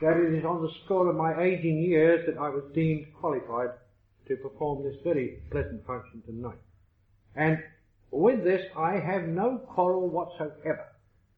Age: 60-79